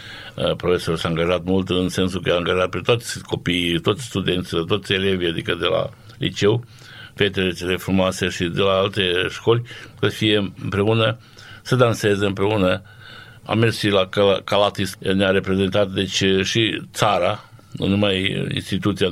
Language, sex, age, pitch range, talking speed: Romanian, male, 60-79, 95-110 Hz, 150 wpm